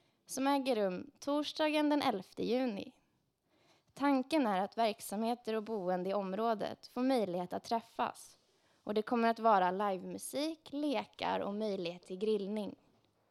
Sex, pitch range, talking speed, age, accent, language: female, 190-255 Hz, 140 wpm, 20-39, native, Swedish